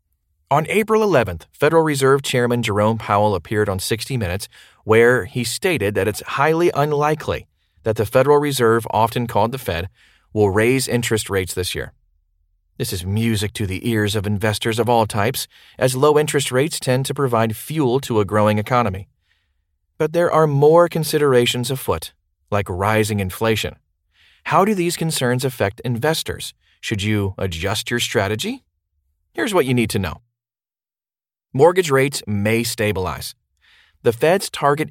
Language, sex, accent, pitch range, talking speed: English, male, American, 100-130 Hz, 155 wpm